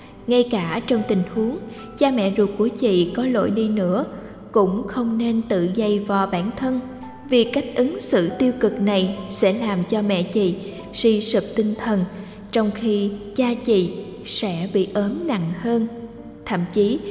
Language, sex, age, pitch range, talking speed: Vietnamese, female, 20-39, 205-235 Hz, 175 wpm